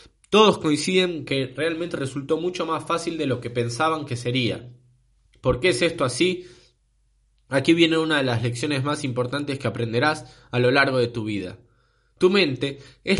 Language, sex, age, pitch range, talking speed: Spanish, male, 20-39, 120-165 Hz, 175 wpm